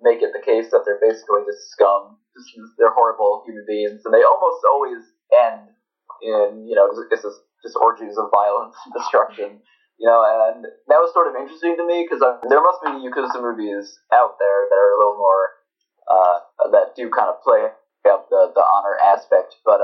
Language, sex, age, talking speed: English, male, 20-39, 190 wpm